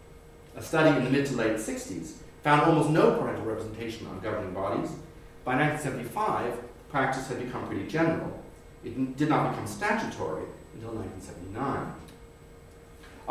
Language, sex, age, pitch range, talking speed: English, male, 40-59, 105-145 Hz, 140 wpm